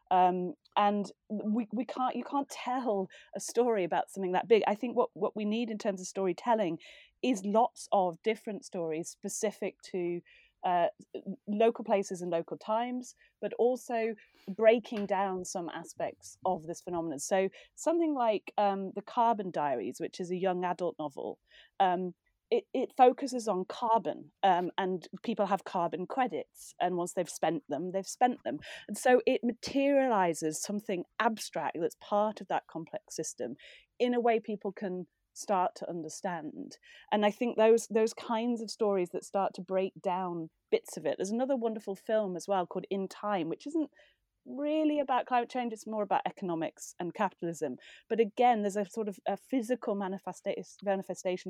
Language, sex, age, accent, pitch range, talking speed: English, female, 30-49, British, 180-235 Hz, 170 wpm